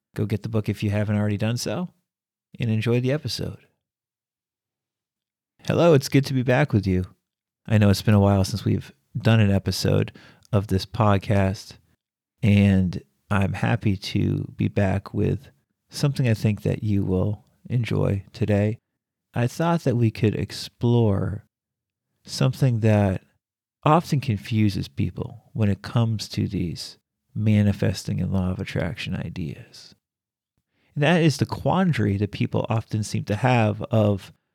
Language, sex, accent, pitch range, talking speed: English, male, American, 100-120 Hz, 145 wpm